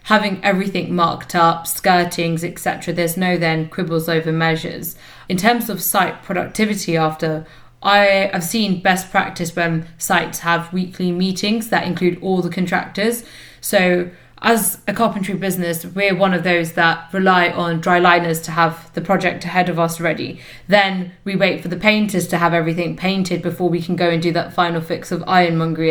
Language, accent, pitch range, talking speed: English, British, 170-190 Hz, 175 wpm